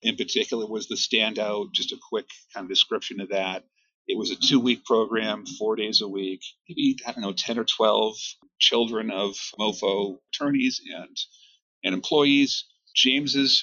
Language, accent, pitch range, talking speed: English, American, 95-145 Hz, 165 wpm